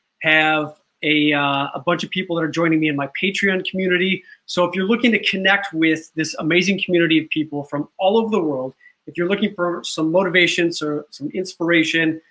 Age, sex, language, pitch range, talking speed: 30-49, male, English, 150-185 Hz, 200 wpm